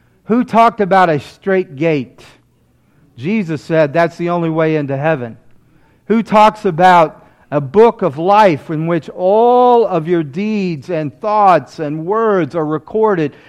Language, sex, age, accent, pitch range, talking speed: English, male, 50-69, American, 125-160 Hz, 145 wpm